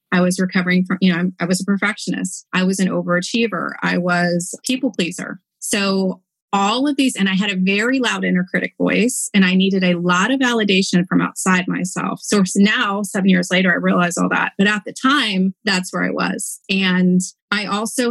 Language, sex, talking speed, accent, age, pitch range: English, female, 205 wpm, American, 30-49, 180-215 Hz